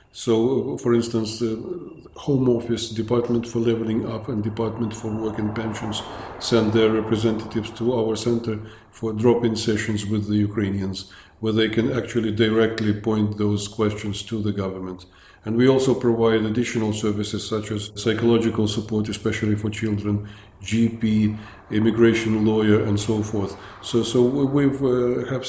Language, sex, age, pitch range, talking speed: English, male, 50-69, 105-120 Hz, 150 wpm